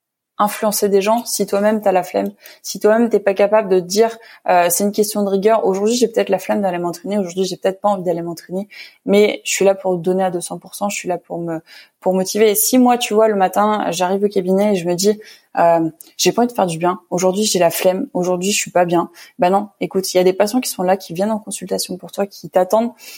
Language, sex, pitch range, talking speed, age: French, female, 175-210 Hz, 265 wpm, 20-39